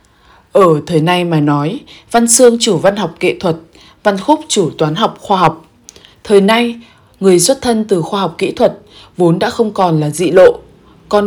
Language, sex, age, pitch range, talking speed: Vietnamese, female, 20-39, 165-225 Hz, 195 wpm